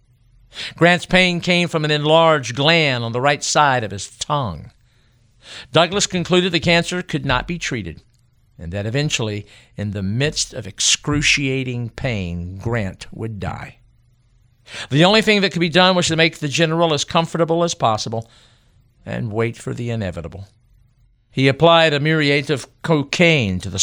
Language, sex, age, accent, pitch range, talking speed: English, male, 50-69, American, 110-150 Hz, 160 wpm